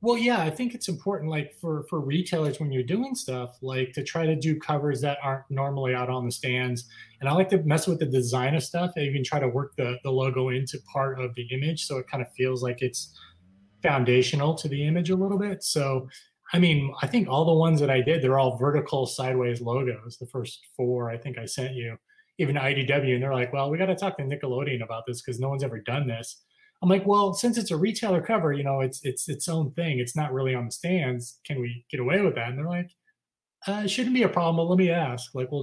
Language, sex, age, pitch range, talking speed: English, male, 20-39, 130-170 Hz, 255 wpm